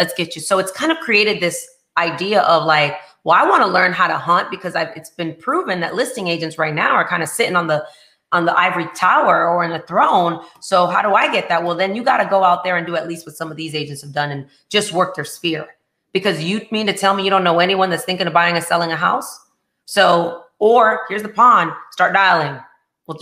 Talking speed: 255 wpm